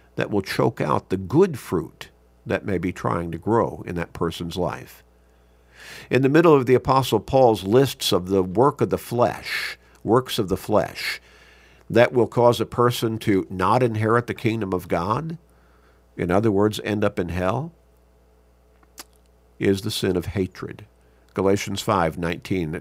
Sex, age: male, 50-69